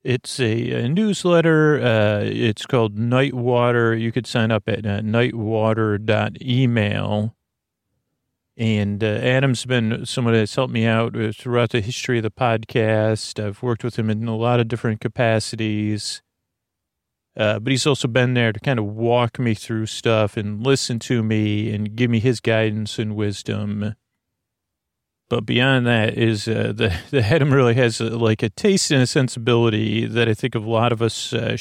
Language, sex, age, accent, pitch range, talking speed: English, male, 40-59, American, 110-125 Hz, 170 wpm